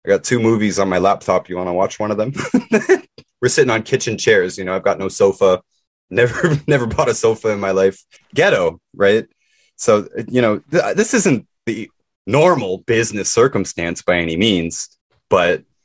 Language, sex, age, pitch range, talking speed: English, male, 20-39, 95-130 Hz, 180 wpm